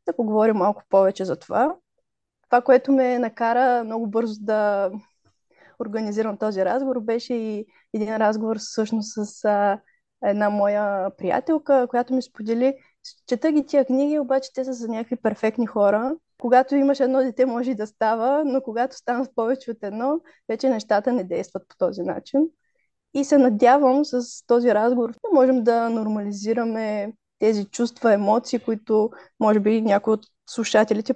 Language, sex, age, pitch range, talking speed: Bulgarian, female, 20-39, 215-265 Hz, 150 wpm